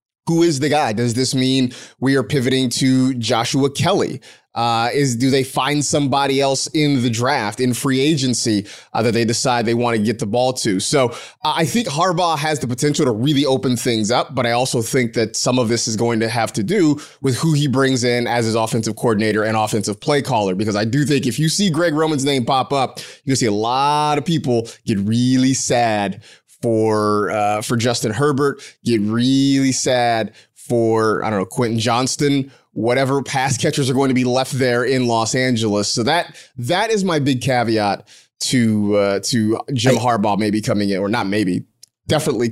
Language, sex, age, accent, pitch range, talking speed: English, male, 30-49, American, 115-140 Hz, 200 wpm